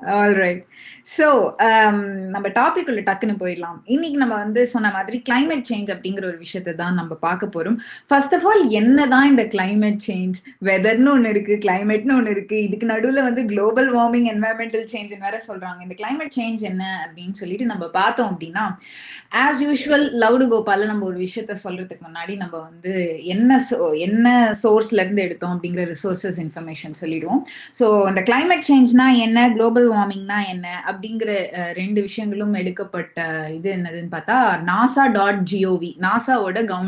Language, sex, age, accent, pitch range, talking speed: Tamil, female, 20-39, native, 180-245 Hz, 70 wpm